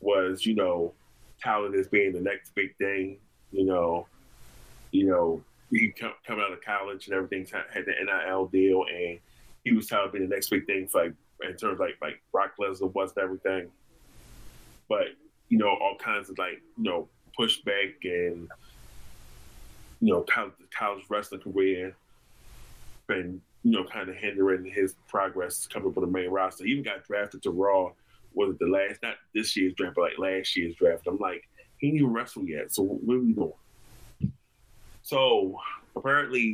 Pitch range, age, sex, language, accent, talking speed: 95-135 Hz, 20-39, male, English, American, 175 wpm